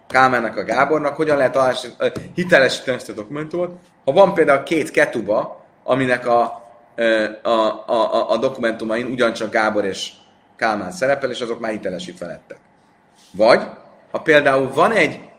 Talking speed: 140 wpm